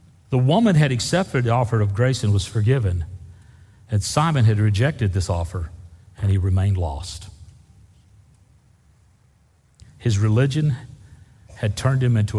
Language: English